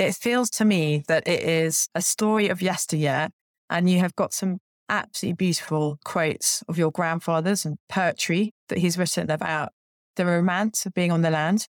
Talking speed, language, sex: 180 wpm, English, female